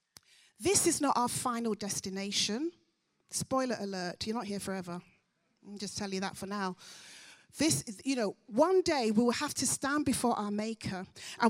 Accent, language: British, English